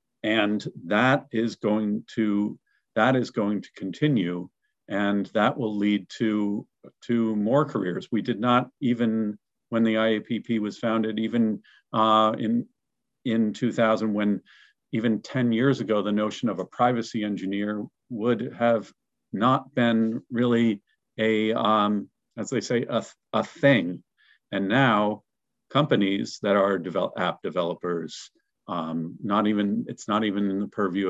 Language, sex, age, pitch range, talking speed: English, male, 50-69, 100-120 Hz, 140 wpm